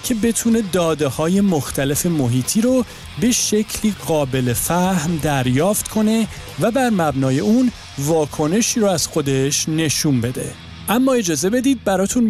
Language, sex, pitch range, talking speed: Persian, male, 150-215 Hz, 130 wpm